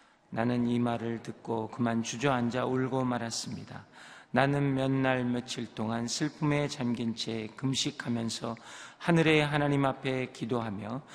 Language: Korean